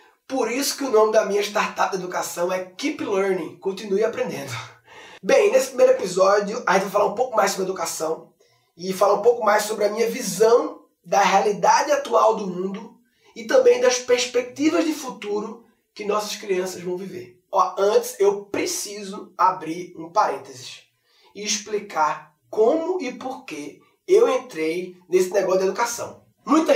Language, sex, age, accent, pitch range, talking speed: Portuguese, male, 20-39, Brazilian, 185-305 Hz, 165 wpm